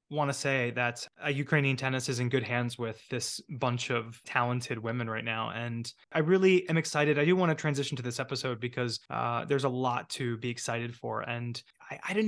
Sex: male